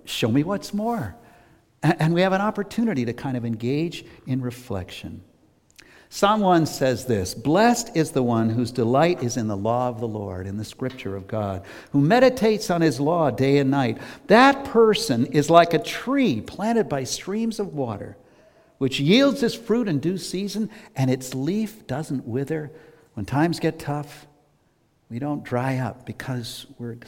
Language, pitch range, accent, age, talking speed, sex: English, 115-170 Hz, American, 60-79, 175 wpm, male